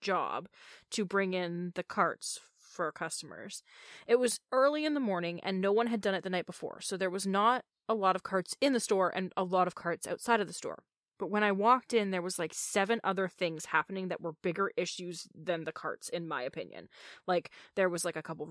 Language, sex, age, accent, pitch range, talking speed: English, female, 20-39, American, 180-215 Hz, 230 wpm